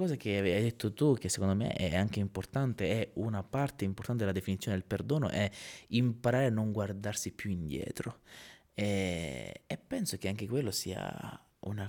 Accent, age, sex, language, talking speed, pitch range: native, 20-39, male, Italian, 170 wpm, 95-120 Hz